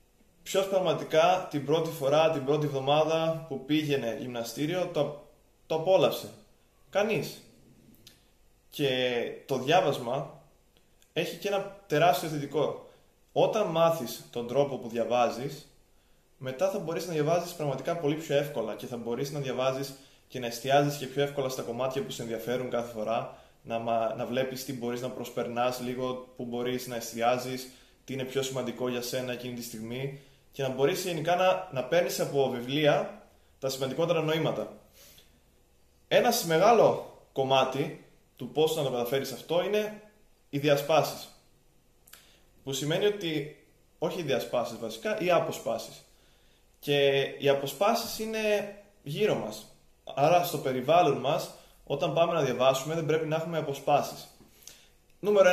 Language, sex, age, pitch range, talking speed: Greek, male, 20-39, 125-165 Hz, 140 wpm